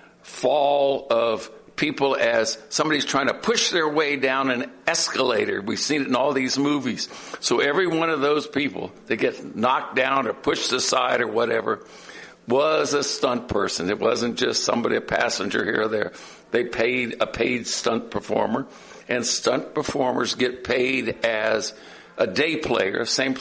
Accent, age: American, 60-79